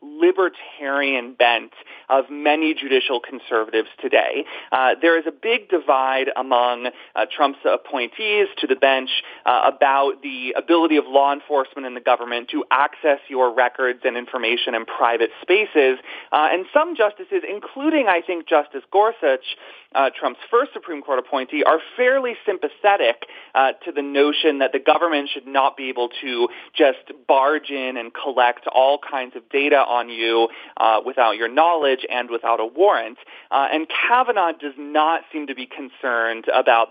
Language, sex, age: English, male, 30-49